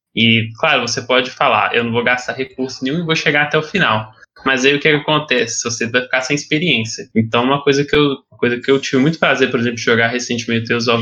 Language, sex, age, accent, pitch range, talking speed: Portuguese, male, 10-29, Brazilian, 115-140 Hz, 245 wpm